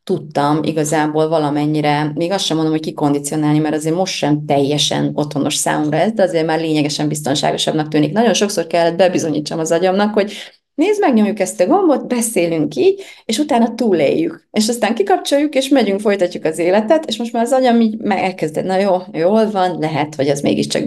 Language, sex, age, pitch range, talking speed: Hungarian, female, 30-49, 150-195 Hz, 180 wpm